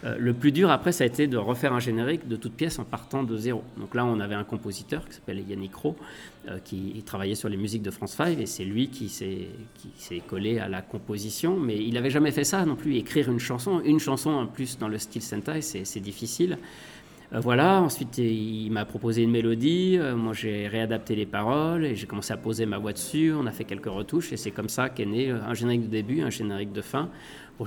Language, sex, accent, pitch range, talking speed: French, male, French, 105-135 Hz, 245 wpm